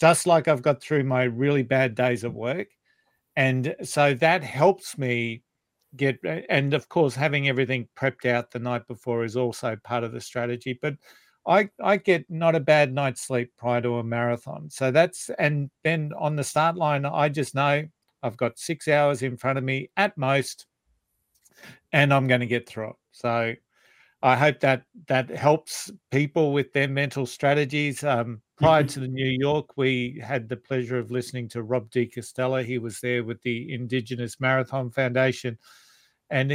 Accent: Australian